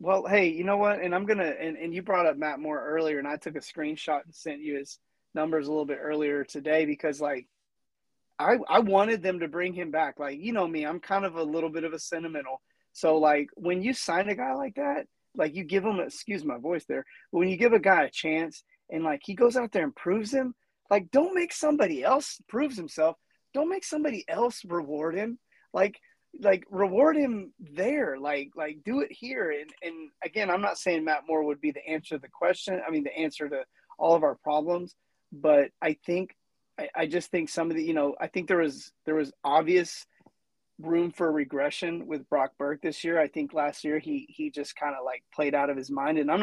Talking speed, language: 235 wpm, English